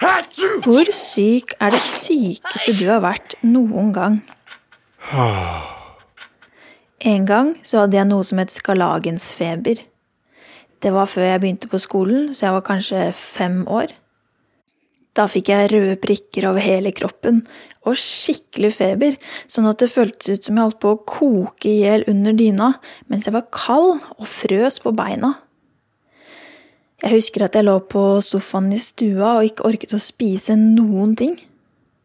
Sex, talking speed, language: female, 150 wpm, English